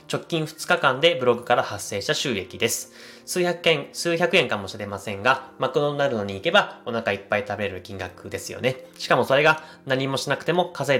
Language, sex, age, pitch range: Japanese, male, 20-39, 100-140 Hz